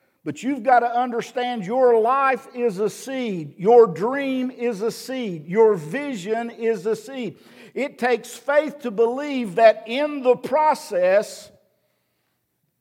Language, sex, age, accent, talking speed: English, male, 50-69, American, 135 wpm